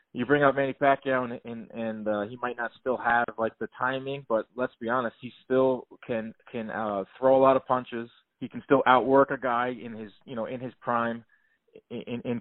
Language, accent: English, American